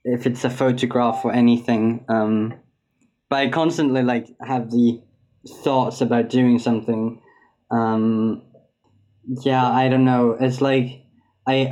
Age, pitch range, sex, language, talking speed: 20-39, 120-130 Hz, male, English, 130 wpm